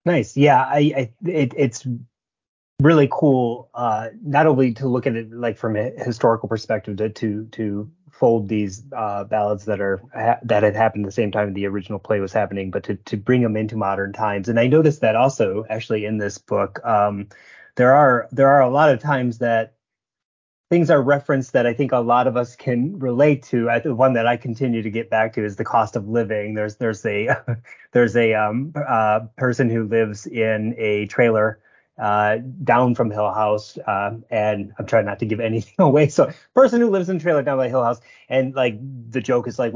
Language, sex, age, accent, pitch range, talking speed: English, male, 30-49, American, 110-130 Hz, 210 wpm